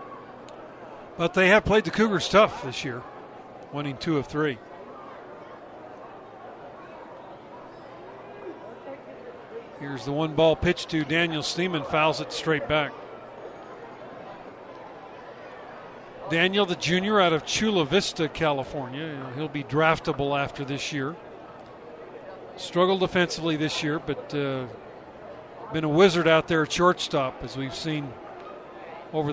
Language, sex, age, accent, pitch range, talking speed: English, male, 50-69, American, 145-175 Hz, 115 wpm